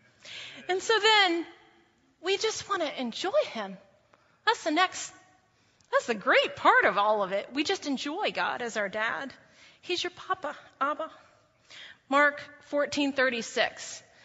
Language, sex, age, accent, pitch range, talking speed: English, female, 30-49, American, 225-290 Hz, 145 wpm